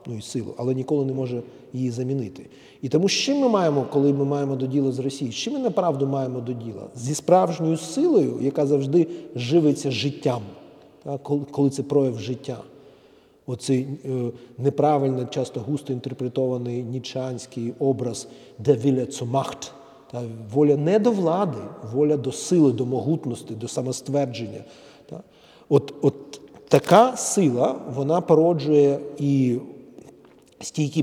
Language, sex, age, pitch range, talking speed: Ukrainian, male, 40-59, 130-165 Hz, 135 wpm